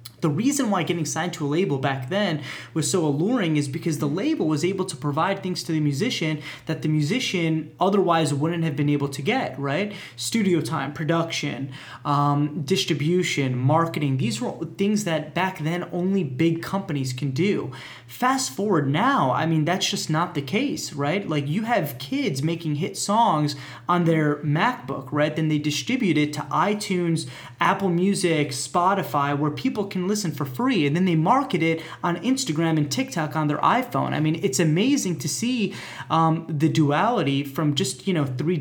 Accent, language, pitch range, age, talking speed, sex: American, English, 145-180 Hz, 20-39, 180 wpm, male